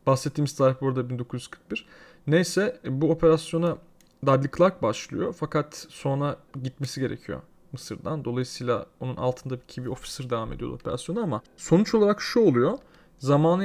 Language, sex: Turkish, male